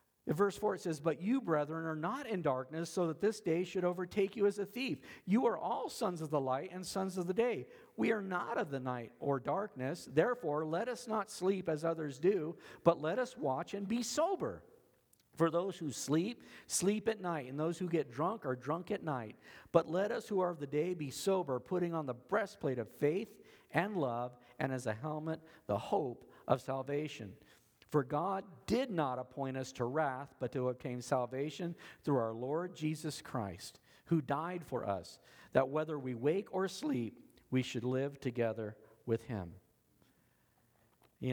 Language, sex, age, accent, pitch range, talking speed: English, male, 50-69, American, 125-180 Hz, 190 wpm